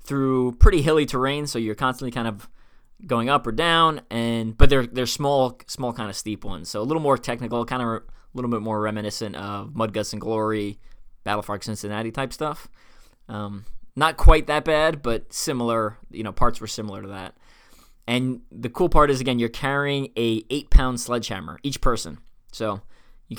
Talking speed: 190 wpm